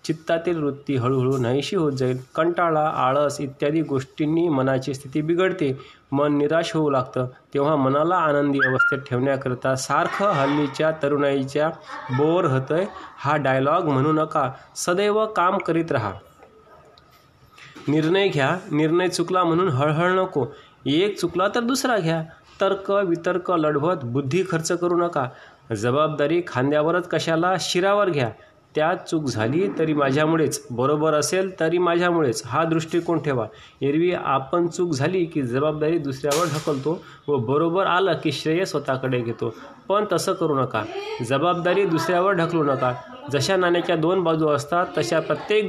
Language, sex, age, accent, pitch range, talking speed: Marathi, male, 30-49, native, 140-175 Hz, 135 wpm